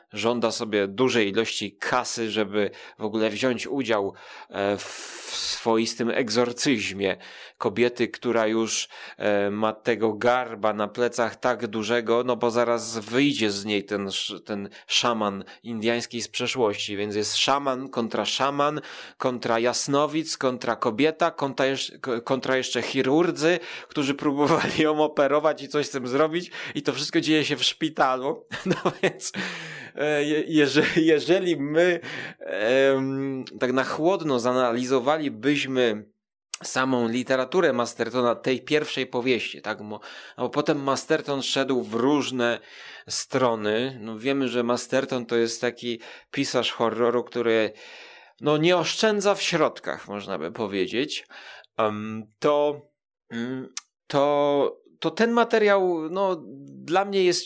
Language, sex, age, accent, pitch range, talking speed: Polish, male, 20-39, native, 115-155 Hz, 125 wpm